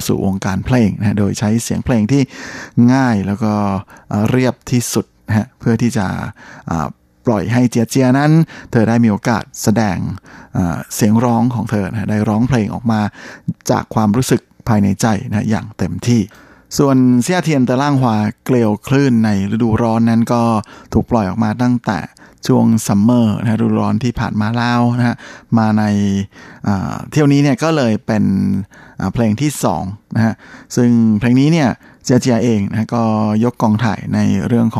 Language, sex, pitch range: Thai, male, 105-120 Hz